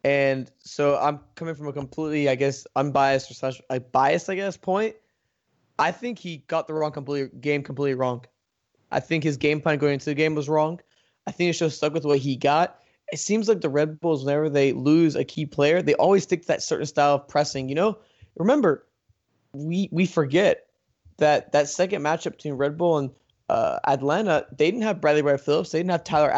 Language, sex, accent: English, male, American